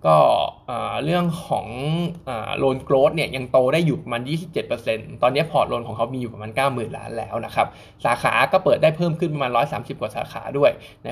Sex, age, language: male, 20-39, Thai